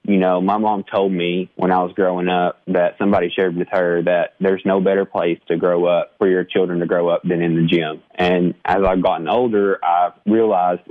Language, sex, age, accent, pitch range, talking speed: English, male, 20-39, American, 85-95 Hz, 225 wpm